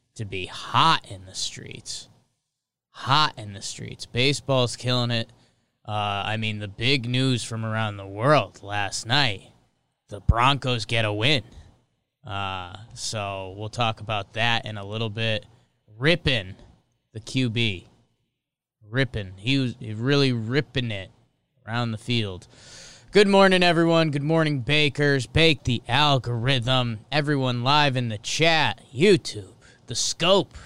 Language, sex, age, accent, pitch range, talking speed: English, male, 20-39, American, 110-145 Hz, 135 wpm